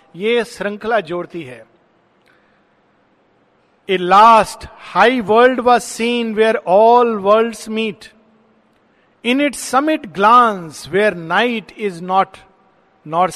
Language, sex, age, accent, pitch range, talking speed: Hindi, male, 50-69, native, 185-245 Hz, 90 wpm